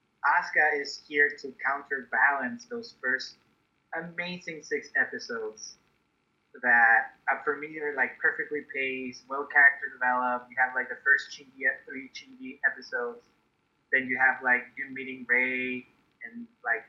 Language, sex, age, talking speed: English, male, 20-39, 130 wpm